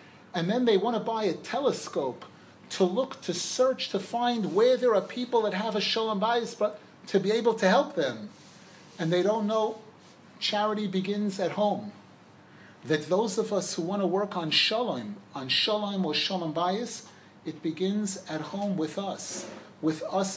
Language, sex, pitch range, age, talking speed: English, male, 180-215 Hz, 40-59, 180 wpm